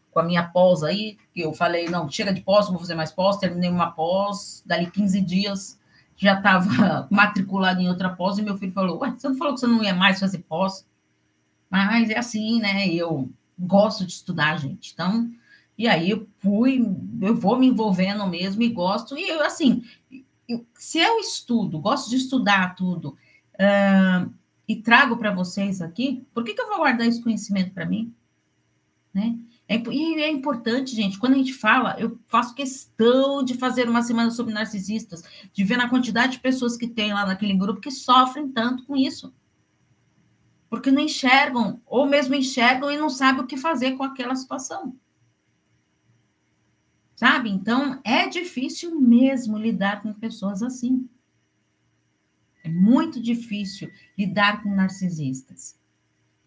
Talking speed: 165 wpm